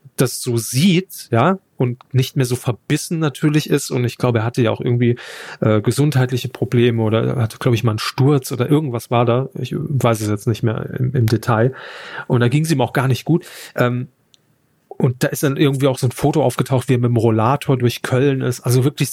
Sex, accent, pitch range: male, German, 120-140 Hz